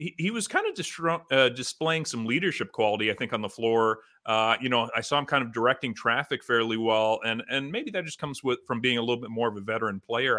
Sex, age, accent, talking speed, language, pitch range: male, 40-59, American, 255 wpm, English, 110-145 Hz